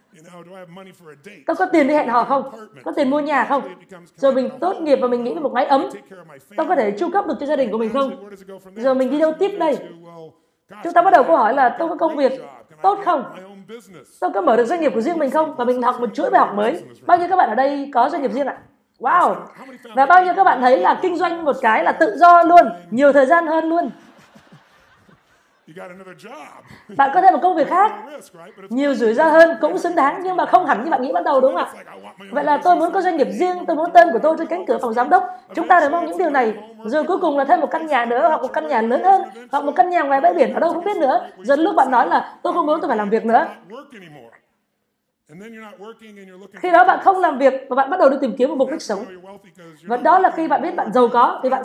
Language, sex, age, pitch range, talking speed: Vietnamese, female, 20-39, 225-335 Hz, 260 wpm